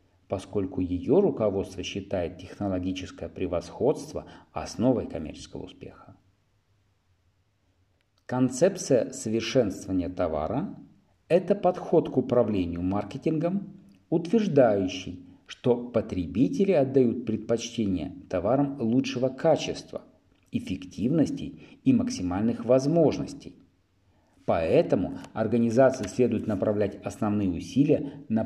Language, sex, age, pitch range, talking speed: Russian, male, 50-69, 95-130 Hz, 75 wpm